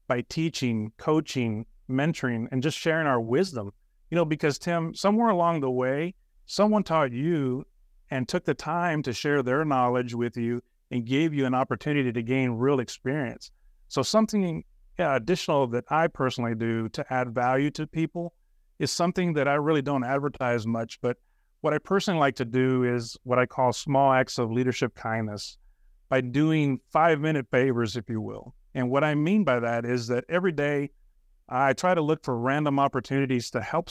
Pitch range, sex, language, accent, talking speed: 125-155 Hz, male, English, American, 180 wpm